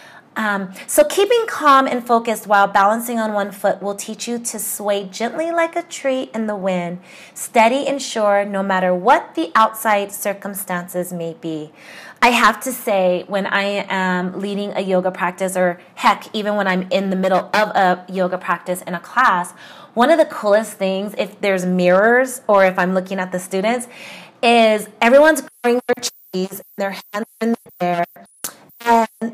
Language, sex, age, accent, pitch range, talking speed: English, female, 30-49, American, 185-230 Hz, 180 wpm